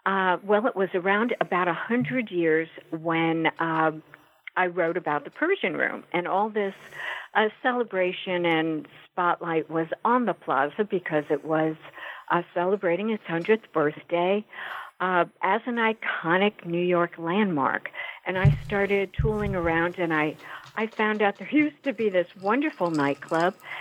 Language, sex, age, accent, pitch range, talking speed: English, female, 60-79, American, 160-210 Hz, 150 wpm